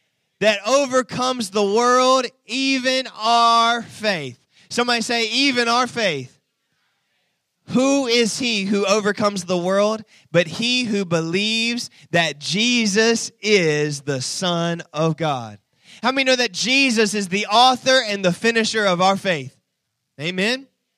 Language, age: English, 20-39